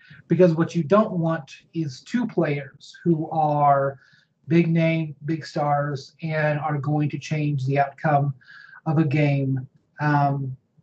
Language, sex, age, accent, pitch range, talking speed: English, male, 30-49, American, 145-165 Hz, 140 wpm